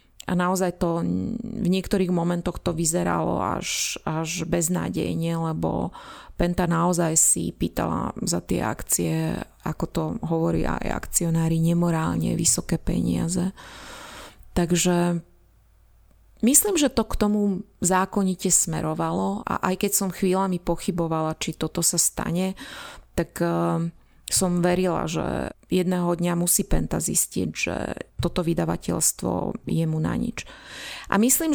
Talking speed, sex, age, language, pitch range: 120 wpm, female, 30-49, Slovak, 165-190 Hz